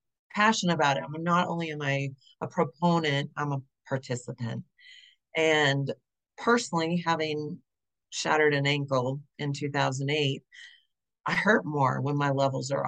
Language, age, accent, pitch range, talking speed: English, 40-59, American, 140-175 Hz, 130 wpm